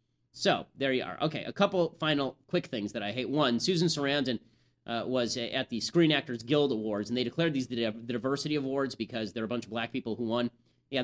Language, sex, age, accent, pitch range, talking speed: English, male, 30-49, American, 115-145 Hz, 235 wpm